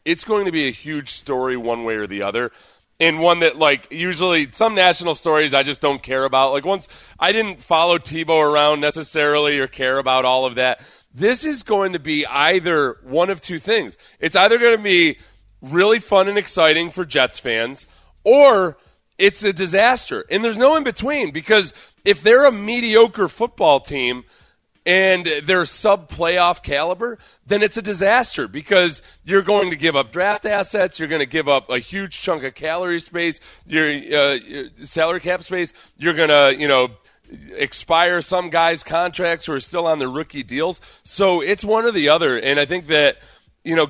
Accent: American